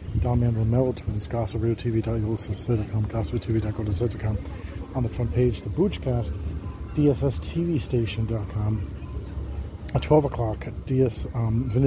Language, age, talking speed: English, 40-59, 85 wpm